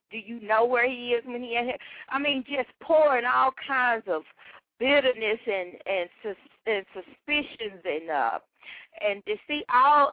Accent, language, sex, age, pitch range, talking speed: American, English, female, 50-69, 245-305 Hz, 165 wpm